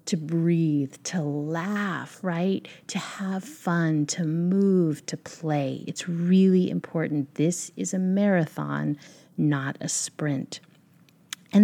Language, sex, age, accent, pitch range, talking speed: English, female, 30-49, American, 150-185 Hz, 120 wpm